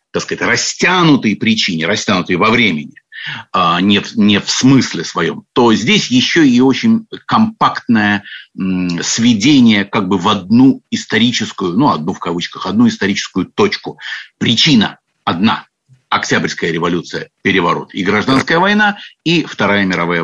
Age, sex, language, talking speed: 50-69, male, Russian, 130 wpm